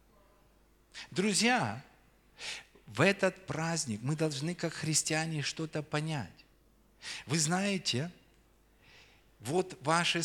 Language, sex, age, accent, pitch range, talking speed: Russian, male, 40-59, native, 145-195 Hz, 80 wpm